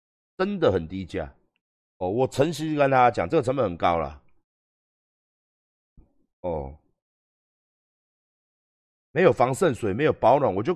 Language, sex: Chinese, male